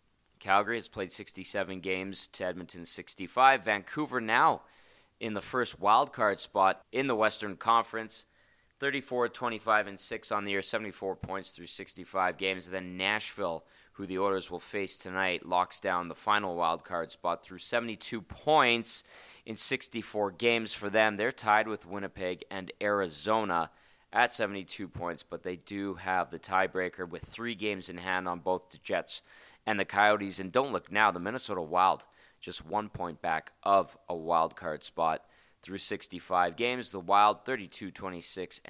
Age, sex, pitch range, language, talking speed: 20-39, male, 90-115 Hz, English, 160 wpm